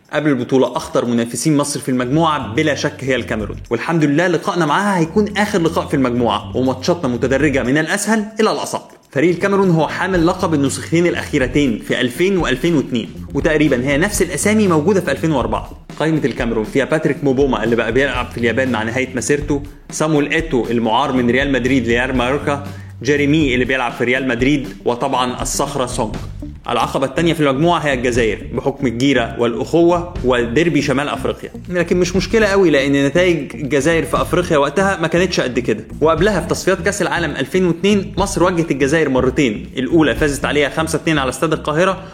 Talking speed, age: 165 wpm, 20-39